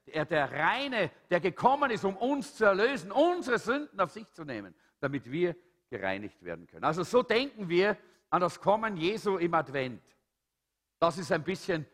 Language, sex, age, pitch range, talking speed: German, male, 50-69, 165-235 Hz, 175 wpm